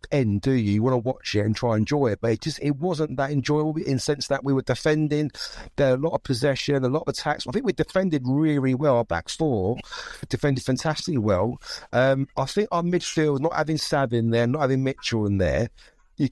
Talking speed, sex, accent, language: 240 wpm, male, British, English